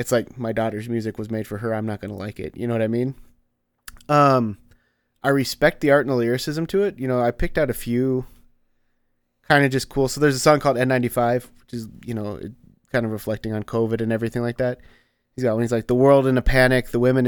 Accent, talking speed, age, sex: American, 250 wpm, 30-49, male